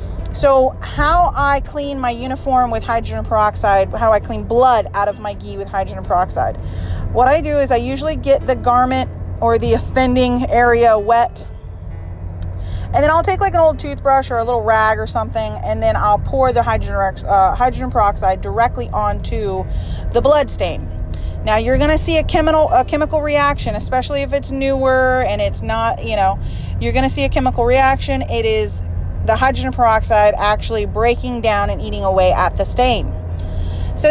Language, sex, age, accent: English, female, 30-49, American